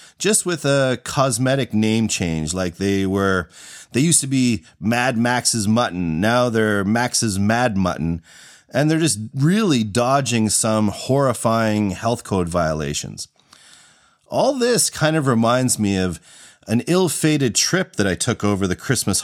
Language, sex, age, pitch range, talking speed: English, male, 30-49, 100-130 Hz, 145 wpm